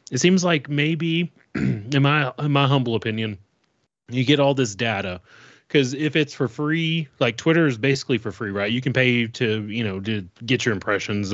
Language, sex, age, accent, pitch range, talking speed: English, male, 30-49, American, 110-140 Hz, 195 wpm